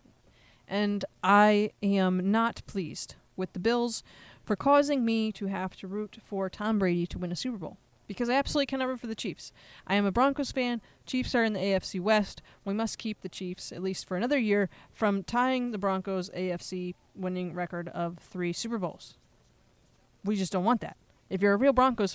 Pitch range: 180-225 Hz